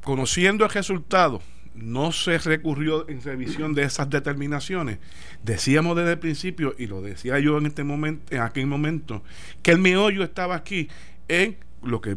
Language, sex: Spanish, male